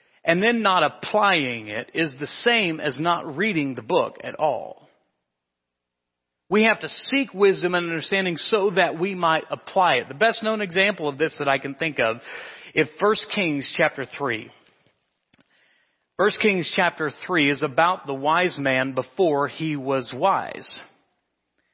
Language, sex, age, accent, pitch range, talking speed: English, male, 40-59, American, 130-185 Hz, 155 wpm